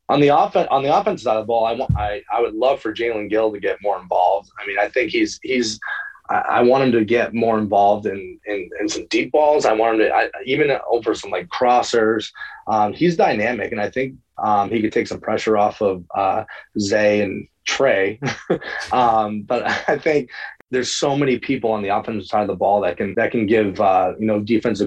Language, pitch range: English, 105-120 Hz